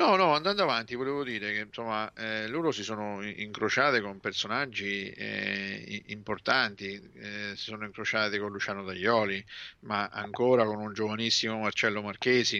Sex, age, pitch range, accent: male, 50-69, 105-130 Hz, native